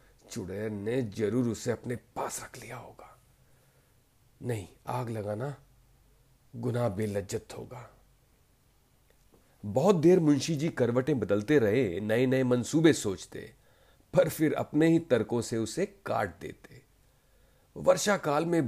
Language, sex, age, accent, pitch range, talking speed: Hindi, male, 40-59, native, 110-145 Hz, 120 wpm